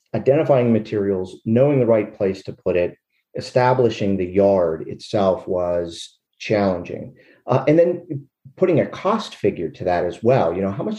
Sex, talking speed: male, 165 wpm